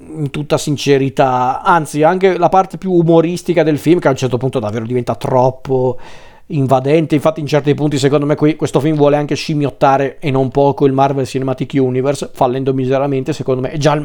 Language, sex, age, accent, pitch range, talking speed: Italian, male, 40-59, native, 130-155 Hz, 195 wpm